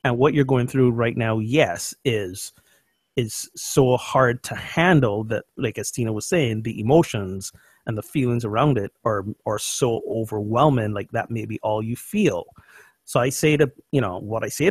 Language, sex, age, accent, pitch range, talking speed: English, male, 30-49, American, 110-140 Hz, 190 wpm